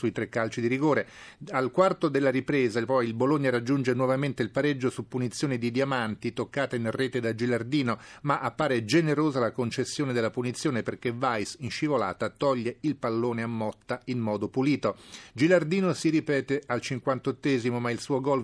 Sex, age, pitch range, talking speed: male, 40-59, 120-145 Hz, 175 wpm